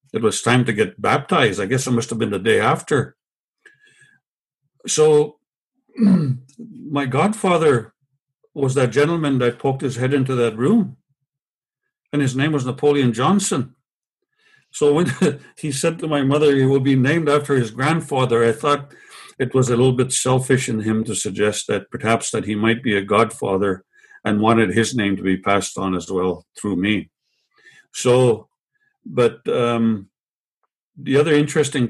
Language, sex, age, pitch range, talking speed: English, male, 60-79, 115-150 Hz, 160 wpm